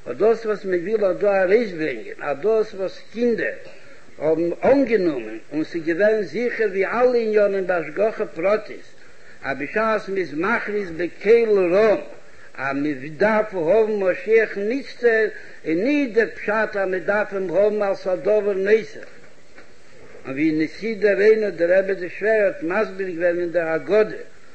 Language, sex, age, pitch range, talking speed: Hebrew, male, 60-79, 190-240 Hz, 105 wpm